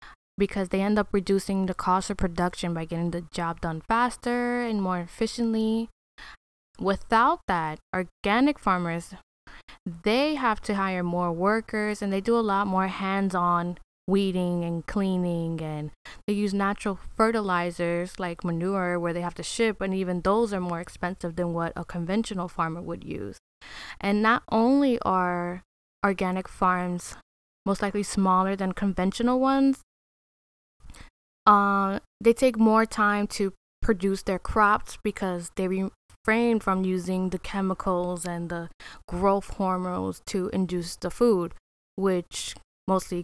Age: 10-29